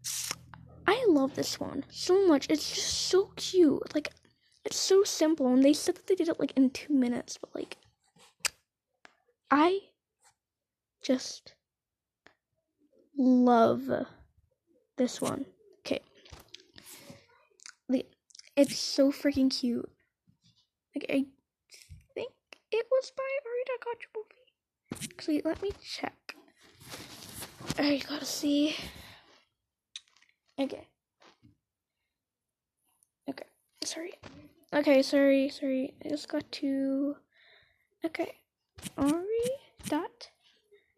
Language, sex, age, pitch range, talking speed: English, female, 10-29, 275-370 Hz, 100 wpm